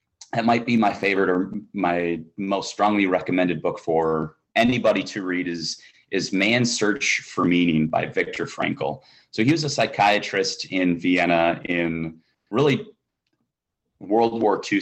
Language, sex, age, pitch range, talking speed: English, male, 30-49, 85-105 Hz, 145 wpm